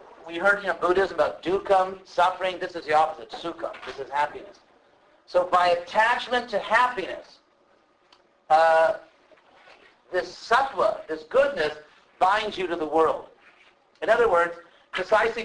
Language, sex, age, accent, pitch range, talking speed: English, male, 50-69, American, 155-215 Hz, 130 wpm